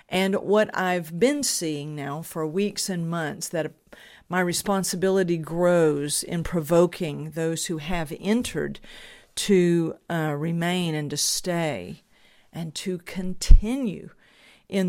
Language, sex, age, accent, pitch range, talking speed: English, female, 50-69, American, 165-195 Hz, 120 wpm